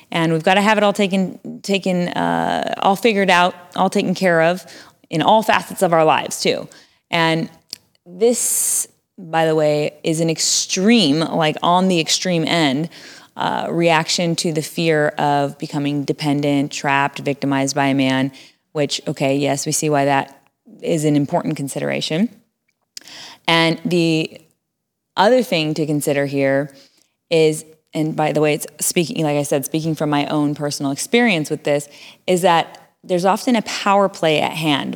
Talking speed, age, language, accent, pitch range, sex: 165 wpm, 20-39, English, American, 145-180 Hz, female